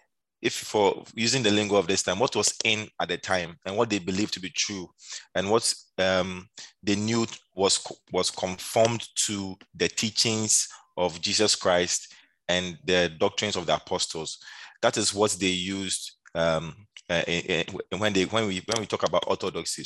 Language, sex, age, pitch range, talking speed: English, male, 30-49, 90-110 Hz, 175 wpm